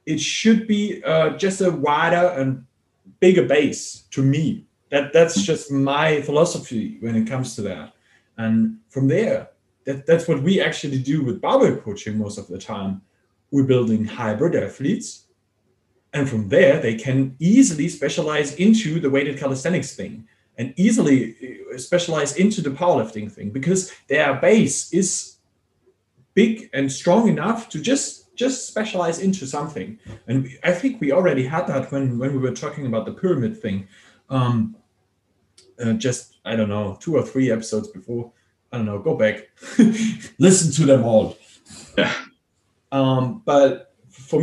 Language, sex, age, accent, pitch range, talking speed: English, male, 30-49, German, 115-175 Hz, 155 wpm